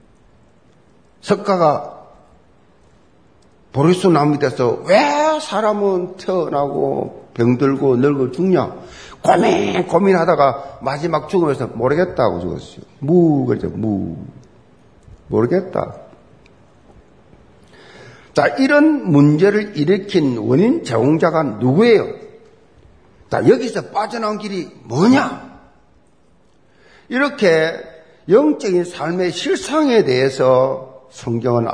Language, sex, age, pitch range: Korean, male, 50-69, 125-195 Hz